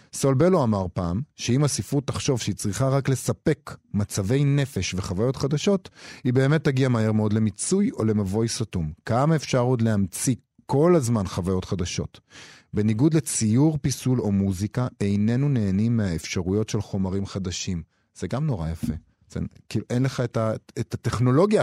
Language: Hebrew